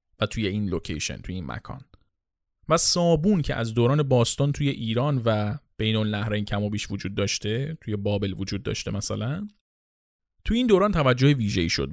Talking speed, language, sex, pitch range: 160 wpm, Persian, male, 105-150 Hz